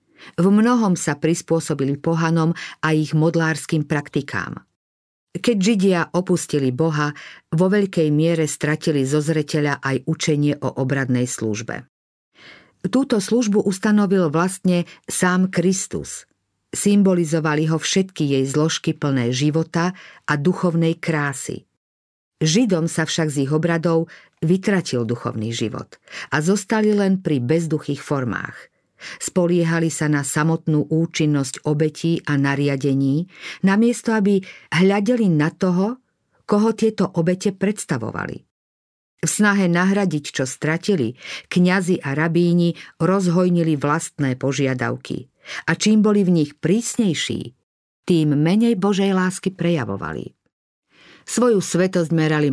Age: 50-69